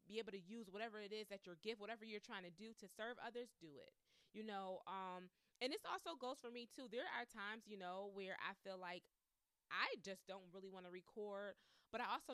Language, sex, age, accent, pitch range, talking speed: English, female, 20-39, American, 190-255 Hz, 240 wpm